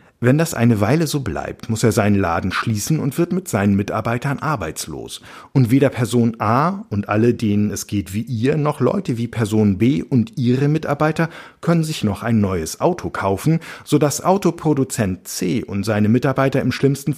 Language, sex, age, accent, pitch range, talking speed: German, male, 50-69, German, 105-140 Hz, 180 wpm